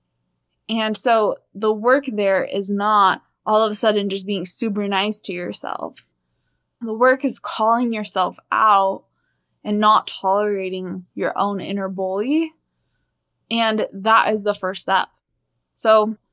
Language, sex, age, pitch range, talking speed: English, female, 10-29, 195-230 Hz, 135 wpm